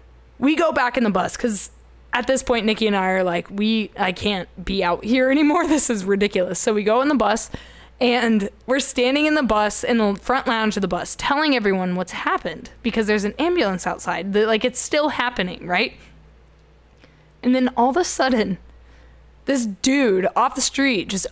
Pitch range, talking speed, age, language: 195-260 Hz, 195 wpm, 20-39, English